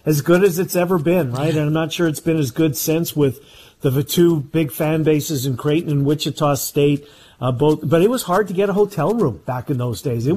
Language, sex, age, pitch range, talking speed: English, male, 50-69, 140-175 Hz, 250 wpm